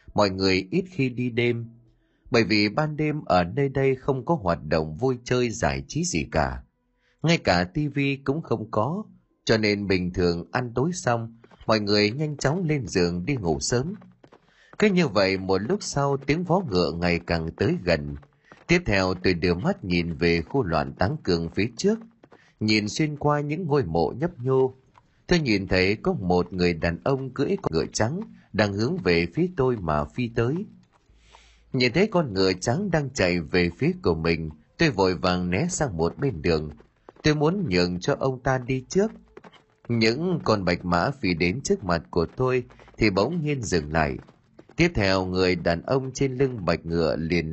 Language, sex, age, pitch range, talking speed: Vietnamese, male, 30-49, 90-145 Hz, 190 wpm